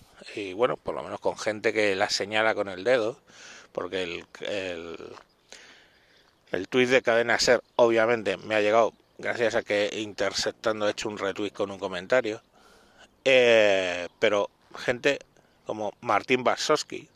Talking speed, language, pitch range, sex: 145 wpm, Spanish, 110-130 Hz, male